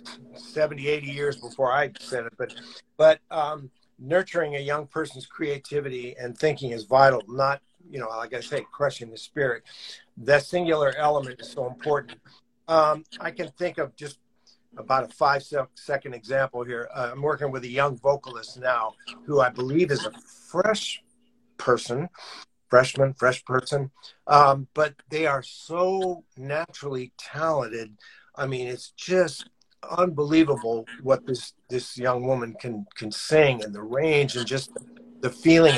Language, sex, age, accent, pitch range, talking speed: English, male, 50-69, American, 125-160 Hz, 155 wpm